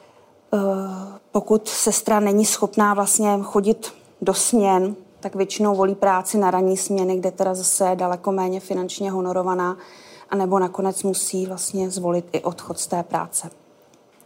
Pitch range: 190-215 Hz